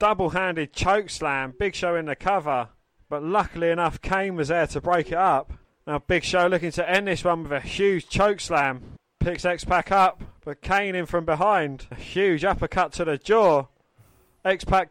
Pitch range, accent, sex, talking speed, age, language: 160-195 Hz, British, male, 195 wpm, 20-39, English